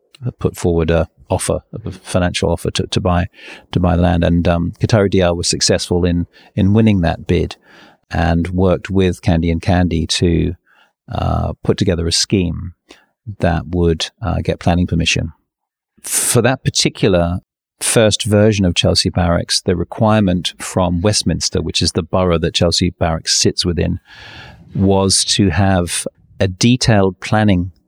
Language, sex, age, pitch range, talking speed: English, male, 40-59, 85-100 Hz, 150 wpm